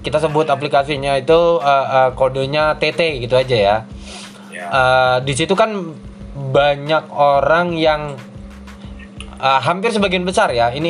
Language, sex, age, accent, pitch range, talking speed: Indonesian, male, 20-39, native, 135-170 Hz, 125 wpm